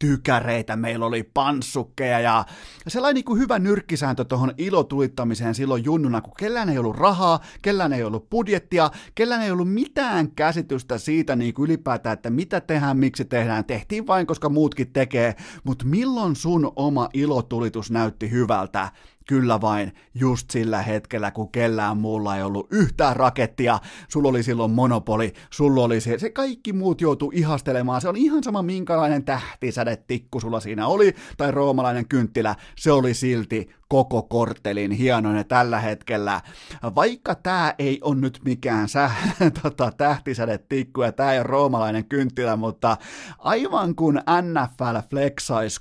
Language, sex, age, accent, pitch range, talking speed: Finnish, male, 30-49, native, 115-160 Hz, 150 wpm